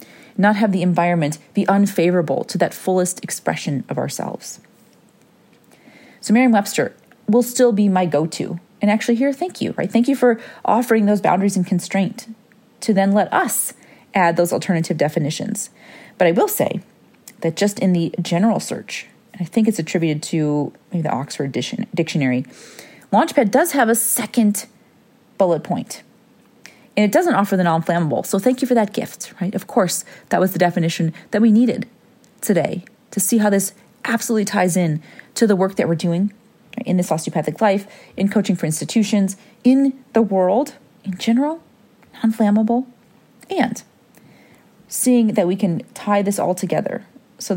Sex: female